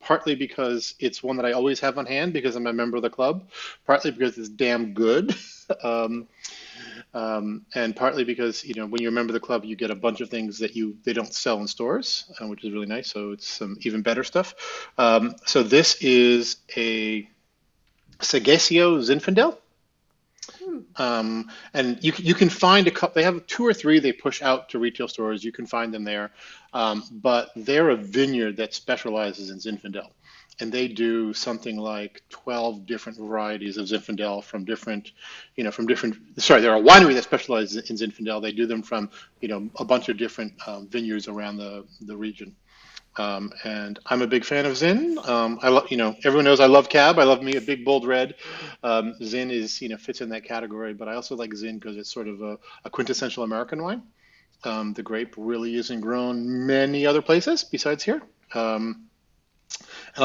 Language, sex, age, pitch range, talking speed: English, male, 30-49, 110-135 Hz, 200 wpm